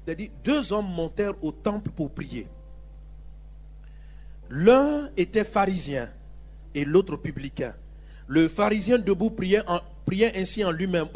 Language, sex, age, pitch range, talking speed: French, male, 40-59, 180-255 Hz, 135 wpm